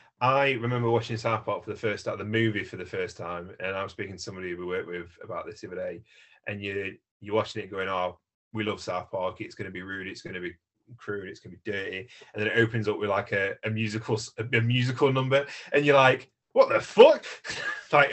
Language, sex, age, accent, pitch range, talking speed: English, male, 30-49, British, 95-120 Hz, 245 wpm